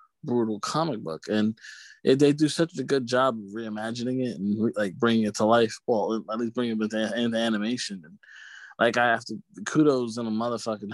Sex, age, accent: male, 20-39, American